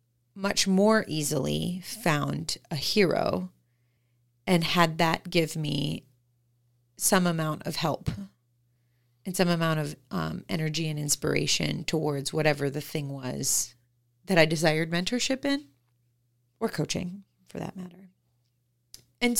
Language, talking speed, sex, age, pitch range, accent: English, 120 wpm, female, 30-49, 120-185 Hz, American